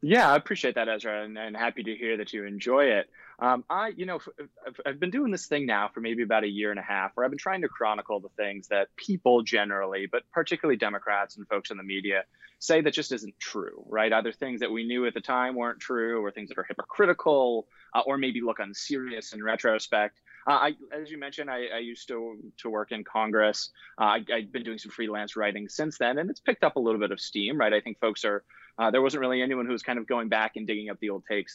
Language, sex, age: English, male, 20-39